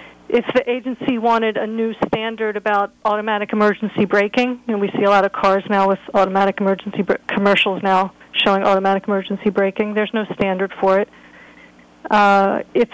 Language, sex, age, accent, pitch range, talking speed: English, female, 40-59, American, 195-230 Hz, 165 wpm